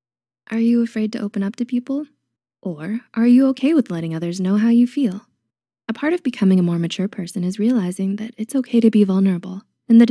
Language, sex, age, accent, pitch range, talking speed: English, female, 20-39, American, 175-230 Hz, 220 wpm